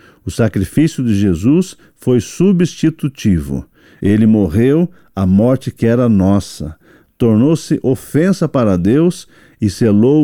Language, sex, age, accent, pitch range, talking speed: Portuguese, male, 50-69, Brazilian, 100-145 Hz, 110 wpm